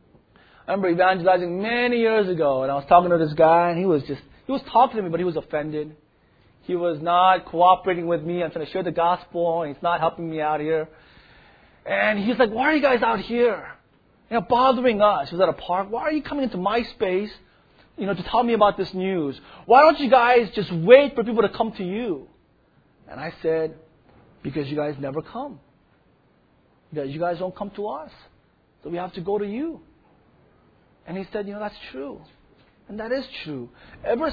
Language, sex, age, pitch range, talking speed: English, male, 30-49, 170-230 Hz, 215 wpm